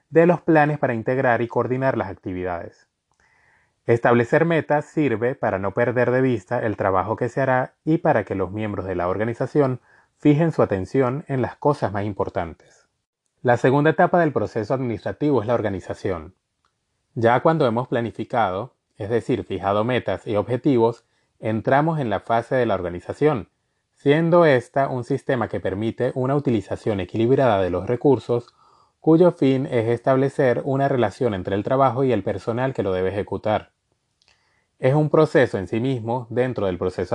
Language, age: Spanish, 30-49